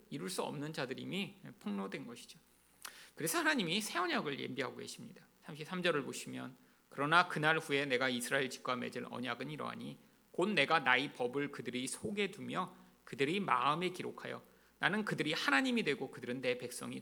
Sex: male